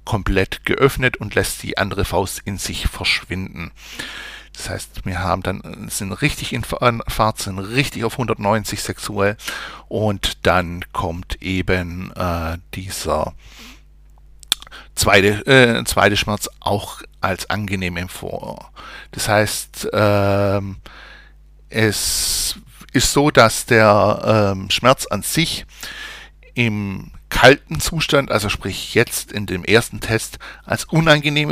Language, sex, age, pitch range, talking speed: German, male, 60-79, 95-120 Hz, 120 wpm